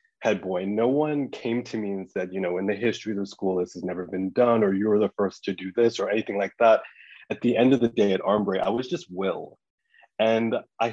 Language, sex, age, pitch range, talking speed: English, male, 20-39, 95-115 Hz, 265 wpm